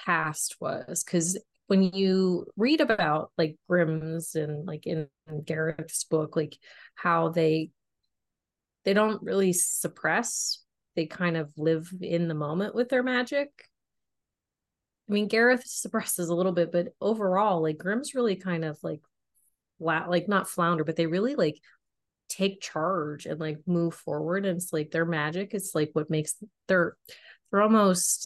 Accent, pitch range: American, 155-190 Hz